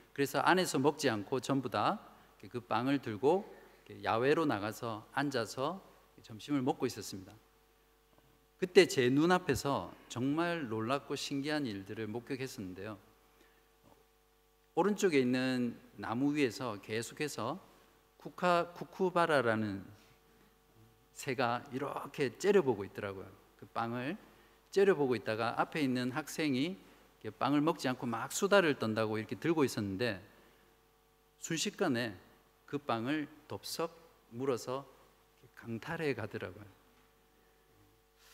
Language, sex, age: Korean, male, 50-69